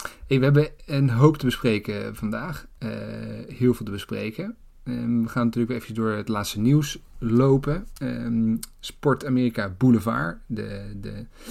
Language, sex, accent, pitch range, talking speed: Dutch, male, Dutch, 110-130 Hz, 155 wpm